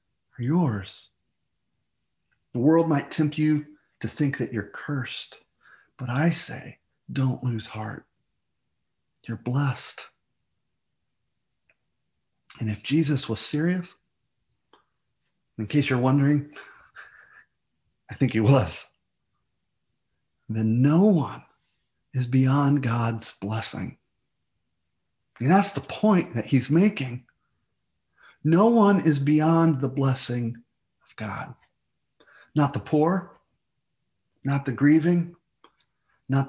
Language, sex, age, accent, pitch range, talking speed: English, male, 40-59, American, 120-165 Hz, 100 wpm